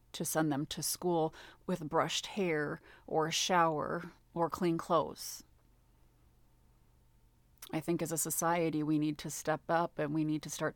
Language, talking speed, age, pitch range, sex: English, 160 wpm, 30-49, 140-165 Hz, female